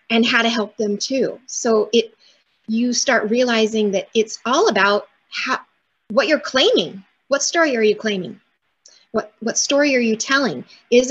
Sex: female